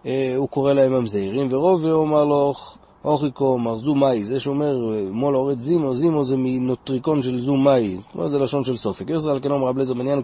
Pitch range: 115-140 Hz